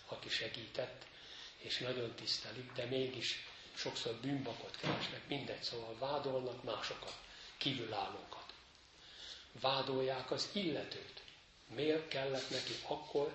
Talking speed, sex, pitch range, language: 100 wpm, male, 115-135 Hz, Hungarian